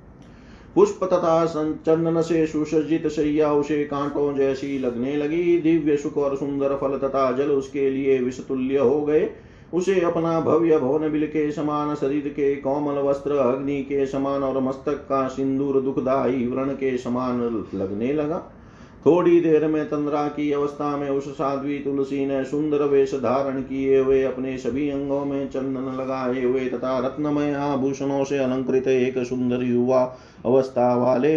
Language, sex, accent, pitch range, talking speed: Hindi, male, native, 130-145 Hz, 150 wpm